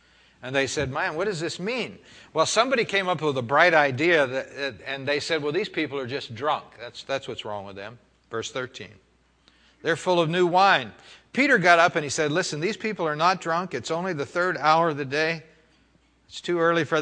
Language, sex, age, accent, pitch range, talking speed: English, male, 60-79, American, 135-170 Hz, 220 wpm